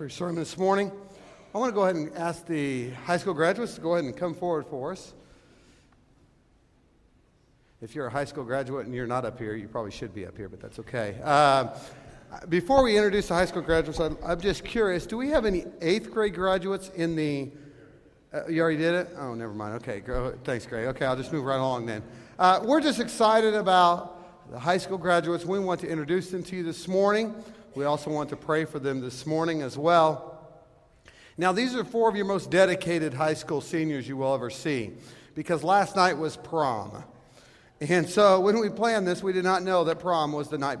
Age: 50-69